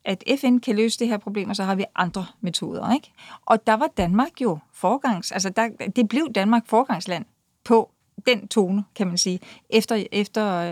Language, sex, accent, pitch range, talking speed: Danish, female, native, 190-230 Hz, 190 wpm